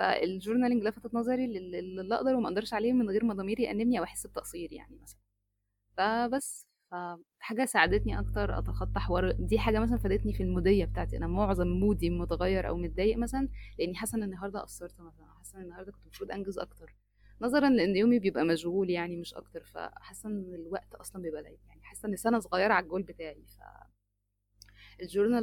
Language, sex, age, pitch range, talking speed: Arabic, female, 20-39, 170-215 Hz, 175 wpm